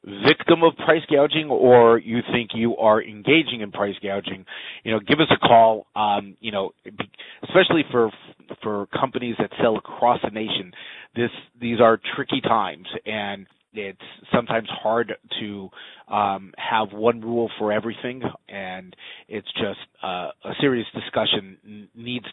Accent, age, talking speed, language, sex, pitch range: American, 30-49, 155 wpm, English, male, 100-120 Hz